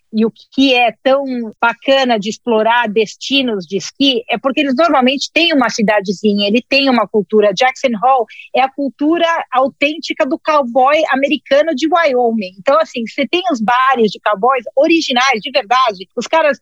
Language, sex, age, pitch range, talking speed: Portuguese, female, 40-59, 230-295 Hz, 165 wpm